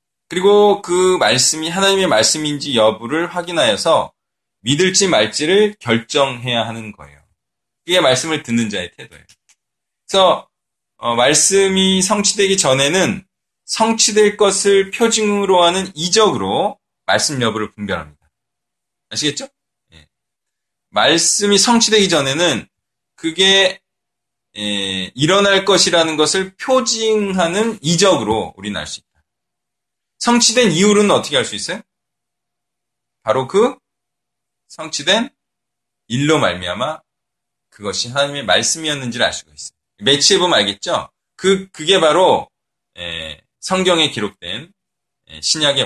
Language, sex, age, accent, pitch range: Korean, male, 20-39, native, 120-195 Hz